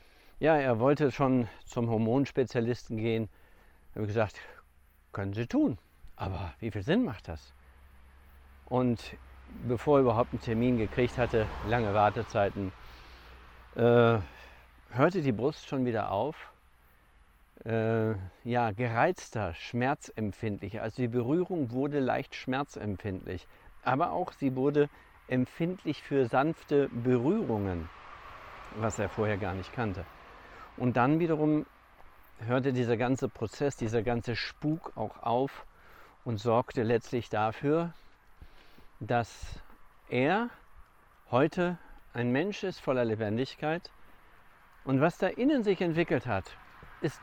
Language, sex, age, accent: German, male, 50-69, German